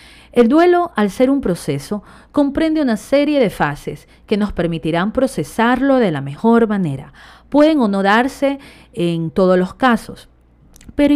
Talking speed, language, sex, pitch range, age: 150 wpm, Spanish, female, 170-260 Hz, 40-59